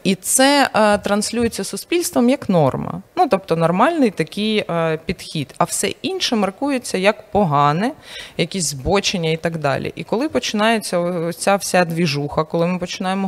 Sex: female